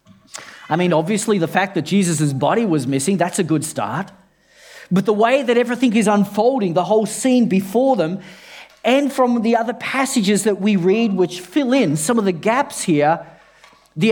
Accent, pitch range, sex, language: Australian, 175-230 Hz, male, English